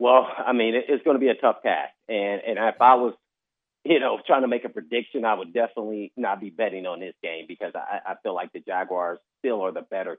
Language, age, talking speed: English, 30-49, 245 wpm